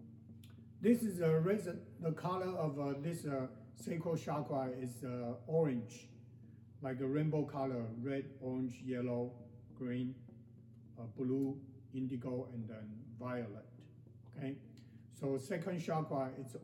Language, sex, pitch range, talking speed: English, male, 120-145 Hz, 115 wpm